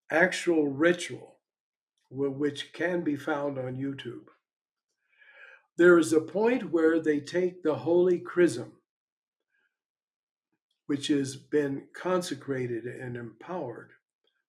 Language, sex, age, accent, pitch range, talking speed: English, male, 60-79, American, 140-180 Hz, 100 wpm